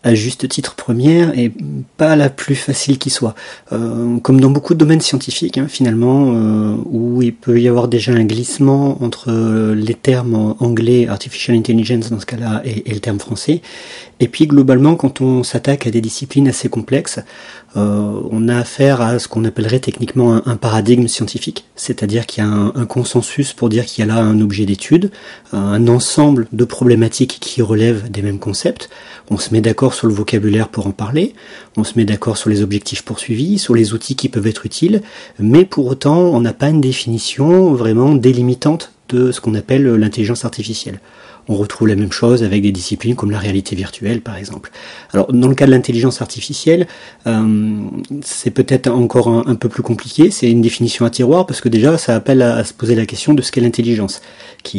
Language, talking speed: French, 200 wpm